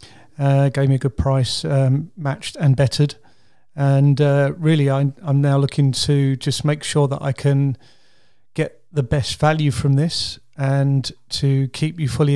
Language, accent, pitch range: English, British, 135-150 Hz